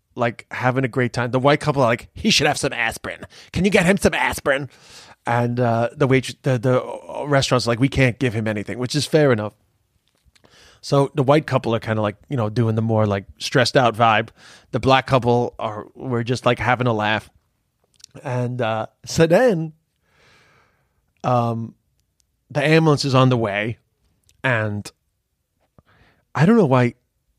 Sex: male